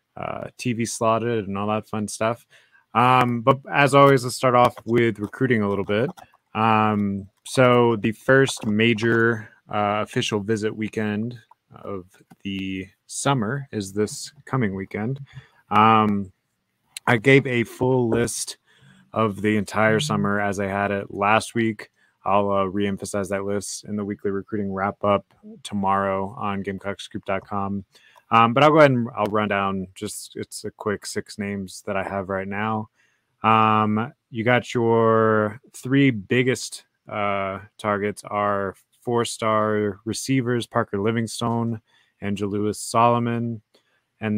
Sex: male